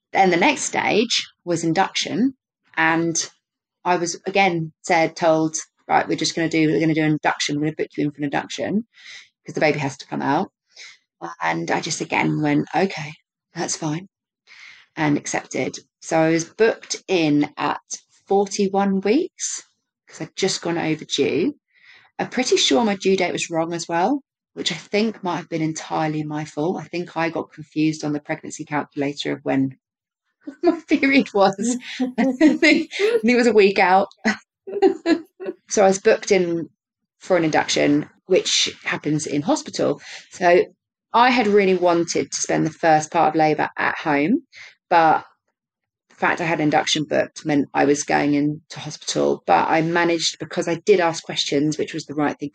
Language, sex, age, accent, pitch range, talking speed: English, female, 30-49, British, 155-205 Hz, 175 wpm